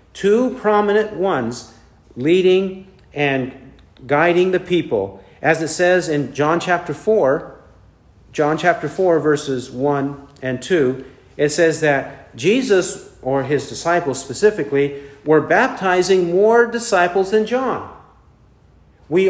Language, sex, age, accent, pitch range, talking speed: English, male, 50-69, American, 135-185 Hz, 115 wpm